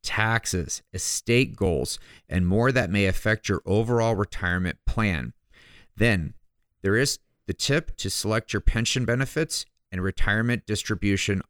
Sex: male